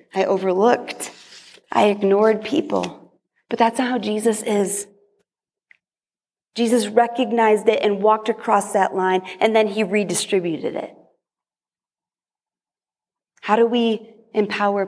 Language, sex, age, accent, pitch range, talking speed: English, female, 30-49, American, 200-255 Hz, 115 wpm